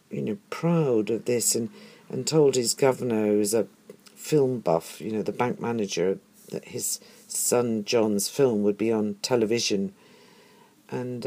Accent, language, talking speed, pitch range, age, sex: British, English, 160 wpm, 100-120 Hz, 50-69, female